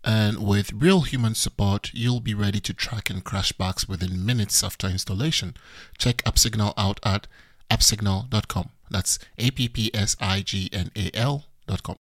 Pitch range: 105-120 Hz